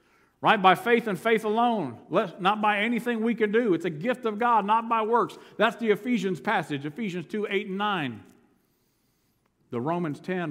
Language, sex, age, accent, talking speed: English, male, 50-69, American, 185 wpm